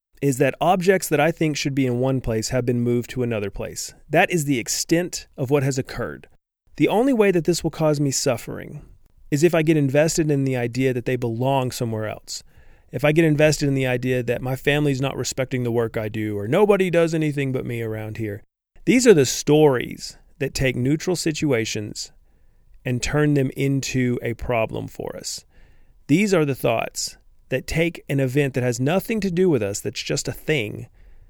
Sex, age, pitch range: male, 40-59, 125-170 Hz